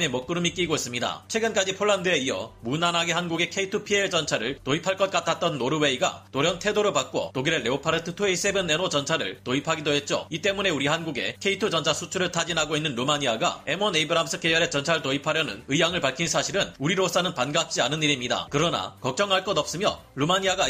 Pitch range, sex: 145-185 Hz, male